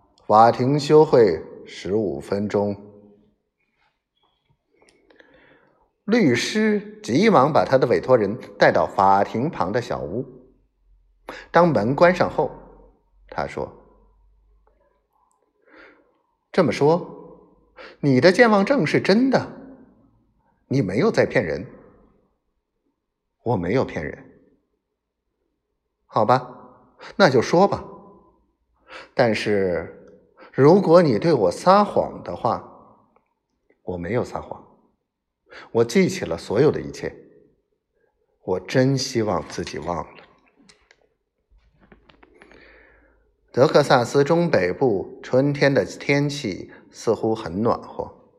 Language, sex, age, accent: Chinese, male, 50-69, native